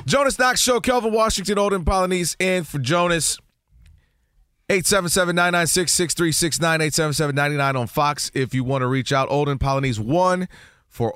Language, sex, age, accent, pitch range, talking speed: English, male, 30-49, American, 125-160 Hz, 130 wpm